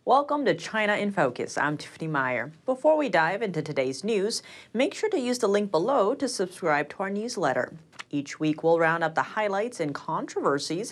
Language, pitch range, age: English, 155-230 Hz, 30-49